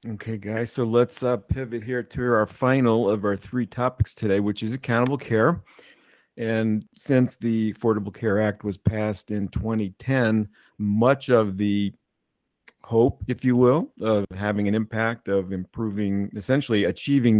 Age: 50-69